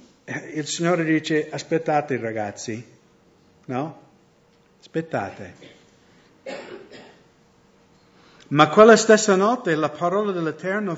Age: 50-69